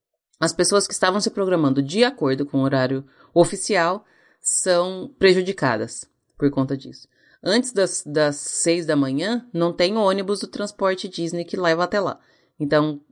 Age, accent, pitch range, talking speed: 30-49, Brazilian, 145-190 Hz, 155 wpm